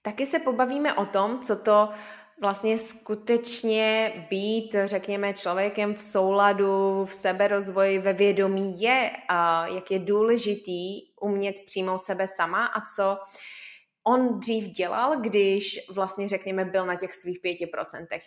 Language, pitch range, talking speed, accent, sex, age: Czech, 180-220 Hz, 135 wpm, native, female, 20-39